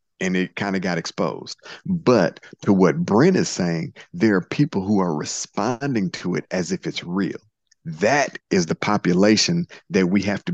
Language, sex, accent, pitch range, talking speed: English, male, American, 95-125 Hz, 180 wpm